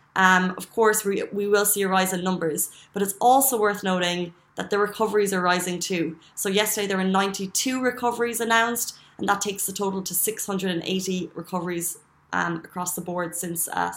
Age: 20-39